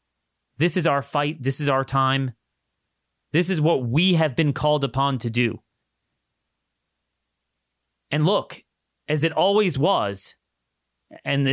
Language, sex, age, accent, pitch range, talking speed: English, male, 30-49, American, 115-165 Hz, 130 wpm